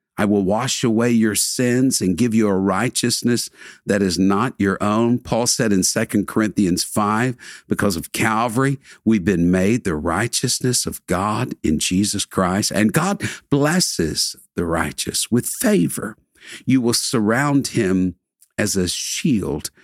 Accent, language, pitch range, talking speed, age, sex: American, English, 100-130 Hz, 150 wpm, 50-69, male